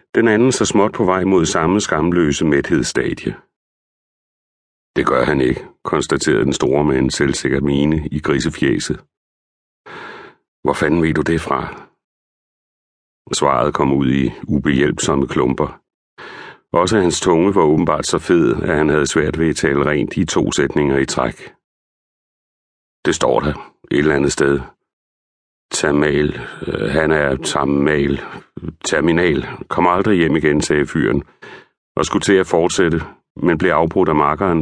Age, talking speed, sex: 60-79, 145 wpm, male